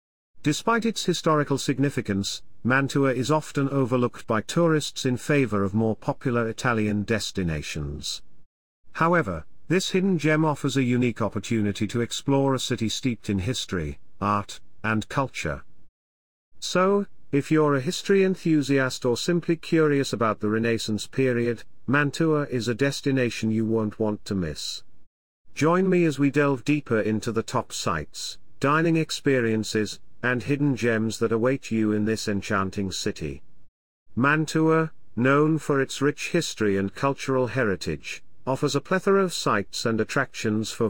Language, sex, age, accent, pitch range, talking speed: English, male, 40-59, British, 105-145 Hz, 140 wpm